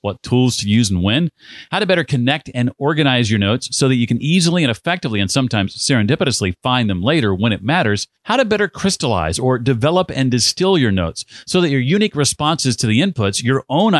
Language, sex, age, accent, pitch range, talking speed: English, male, 40-59, American, 110-145 Hz, 215 wpm